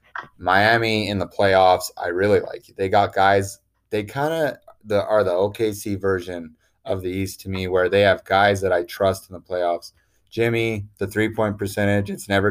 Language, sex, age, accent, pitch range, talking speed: English, male, 20-39, American, 90-100 Hz, 185 wpm